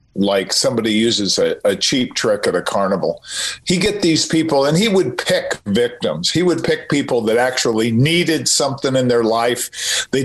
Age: 50-69